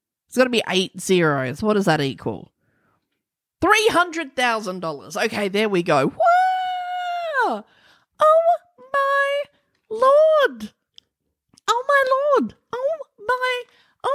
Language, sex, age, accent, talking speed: English, female, 30-49, Australian, 105 wpm